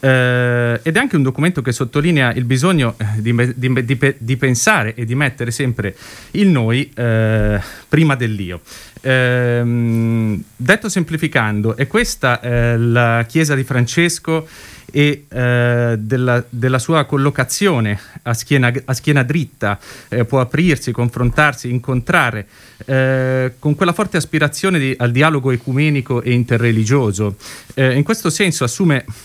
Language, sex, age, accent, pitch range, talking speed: Italian, male, 30-49, native, 115-145 Hz, 125 wpm